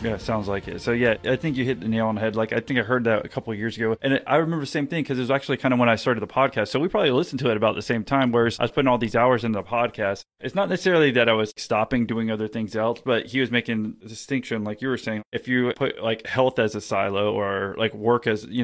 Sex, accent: male, American